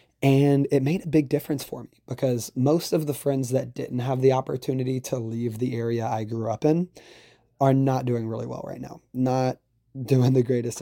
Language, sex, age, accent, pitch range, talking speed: English, male, 20-39, American, 115-130 Hz, 205 wpm